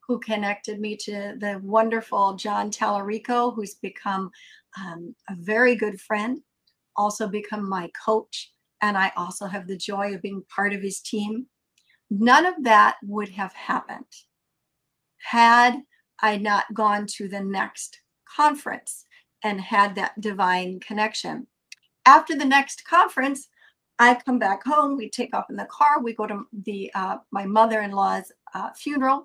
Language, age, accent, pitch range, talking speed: English, 50-69, American, 200-240 Hz, 150 wpm